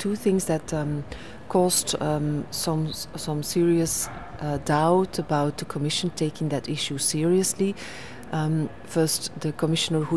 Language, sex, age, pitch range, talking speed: French, female, 40-59, 150-180 Hz, 135 wpm